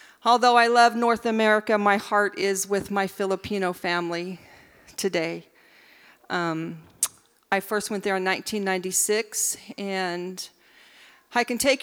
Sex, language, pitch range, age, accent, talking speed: female, English, 180-215 Hz, 40-59, American, 120 wpm